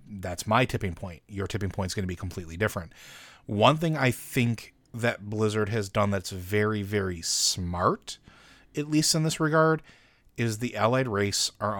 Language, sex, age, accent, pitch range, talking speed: English, male, 30-49, American, 100-120 Hz, 180 wpm